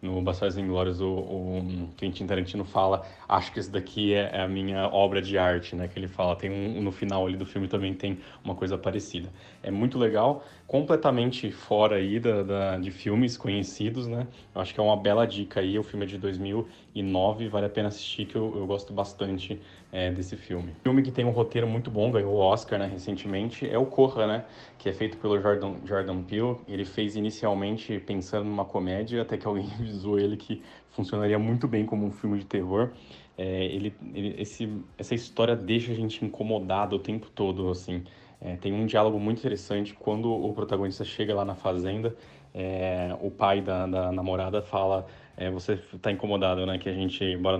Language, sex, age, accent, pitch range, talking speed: Portuguese, male, 20-39, Brazilian, 95-105 Hz, 205 wpm